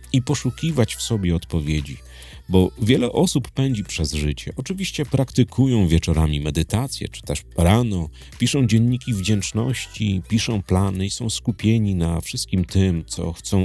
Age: 40-59